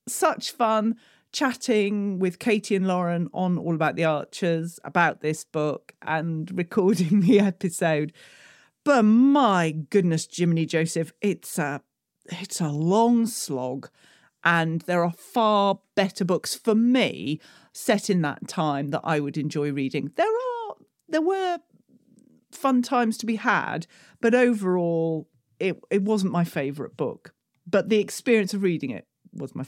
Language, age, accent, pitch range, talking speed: English, 40-59, British, 165-230 Hz, 145 wpm